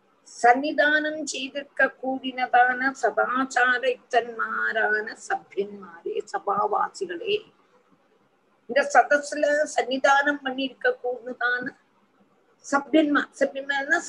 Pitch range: 240-360 Hz